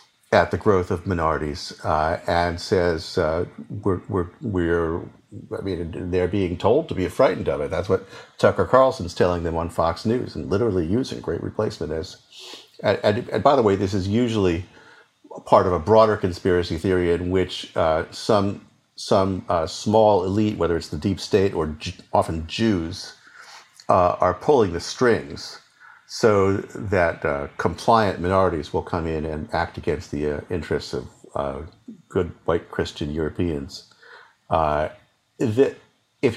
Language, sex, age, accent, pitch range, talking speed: English, male, 50-69, American, 85-105 Hz, 160 wpm